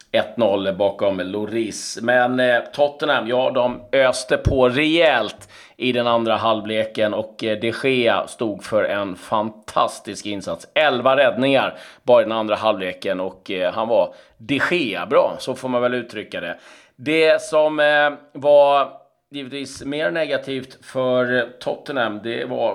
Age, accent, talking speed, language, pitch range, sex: 30-49, native, 130 wpm, Swedish, 110-135 Hz, male